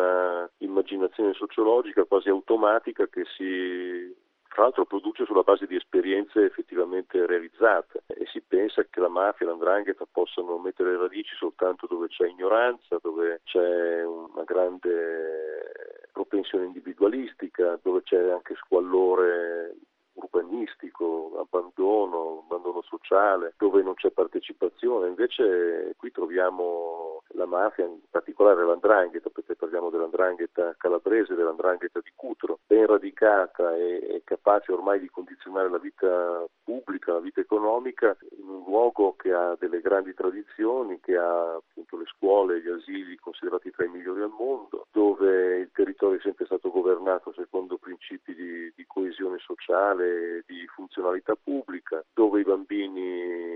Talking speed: 130 wpm